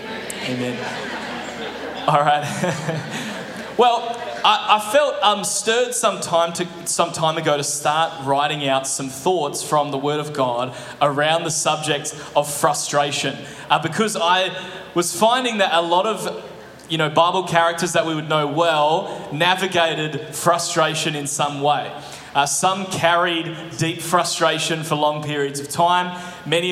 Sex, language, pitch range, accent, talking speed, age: male, English, 150-180 Hz, Australian, 145 wpm, 20-39